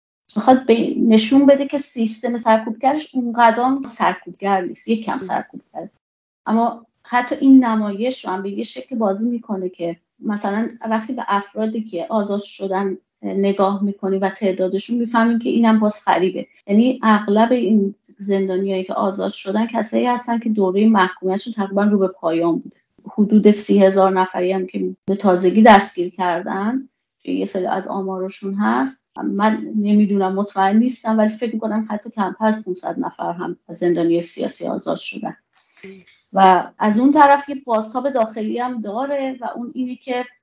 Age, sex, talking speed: 30-49, female, 150 wpm